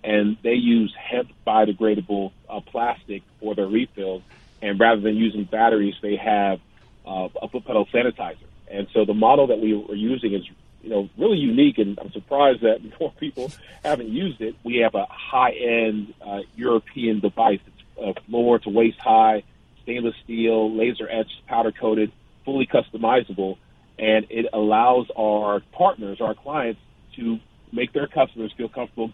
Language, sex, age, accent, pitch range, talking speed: English, male, 40-59, American, 105-115 Hz, 160 wpm